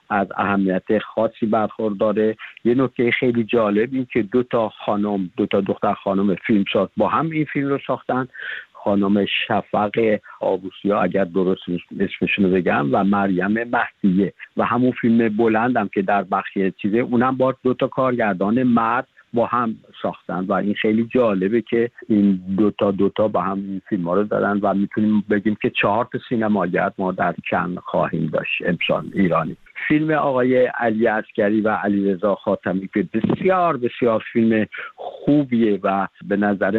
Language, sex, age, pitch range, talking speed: Persian, male, 50-69, 100-120 Hz, 160 wpm